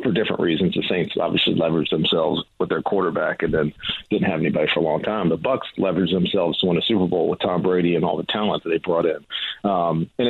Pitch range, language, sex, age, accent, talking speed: 95-115 Hz, English, male, 40-59, American, 245 wpm